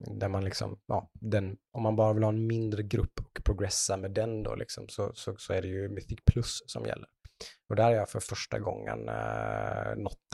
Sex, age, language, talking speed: male, 20-39, Swedish, 220 wpm